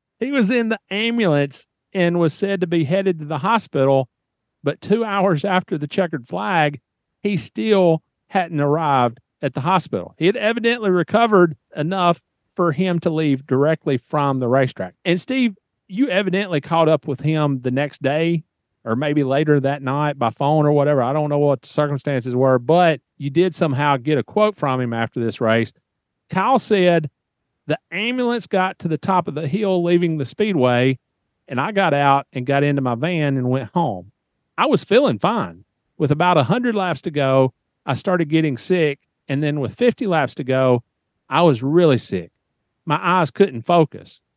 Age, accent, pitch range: 40-59, American, 135-180 Hz